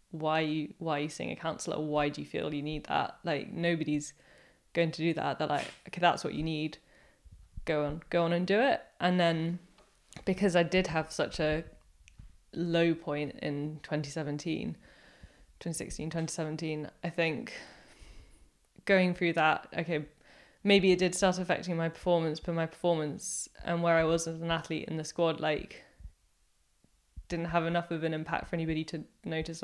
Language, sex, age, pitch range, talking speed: English, female, 20-39, 150-170 Hz, 175 wpm